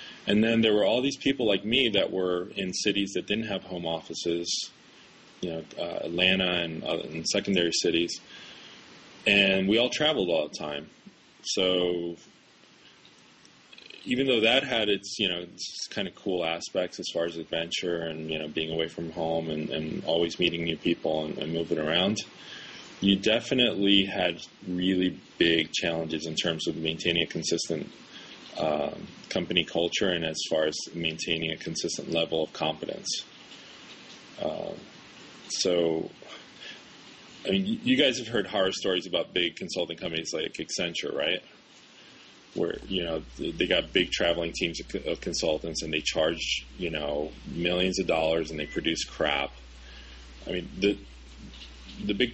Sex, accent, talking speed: male, American, 155 wpm